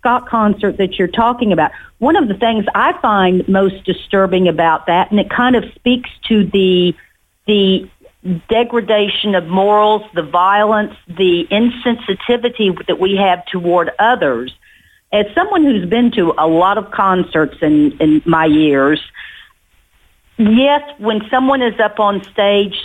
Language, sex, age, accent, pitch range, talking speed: English, female, 50-69, American, 170-210 Hz, 145 wpm